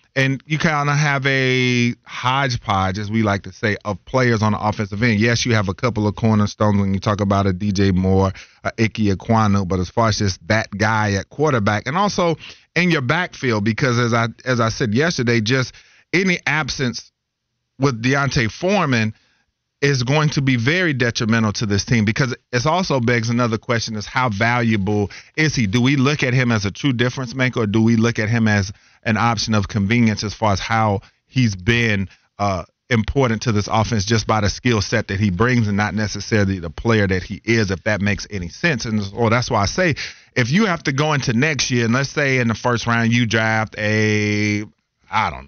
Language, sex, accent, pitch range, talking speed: English, male, American, 105-130 Hz, 210 wpm